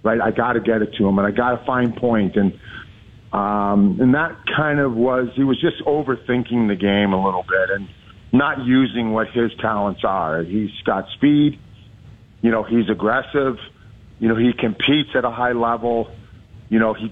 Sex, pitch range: male, 105-125 Hz